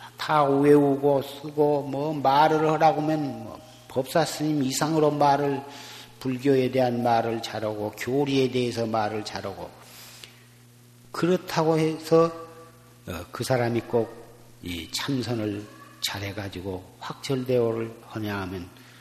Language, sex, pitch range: Korean, male, 115-145 Hz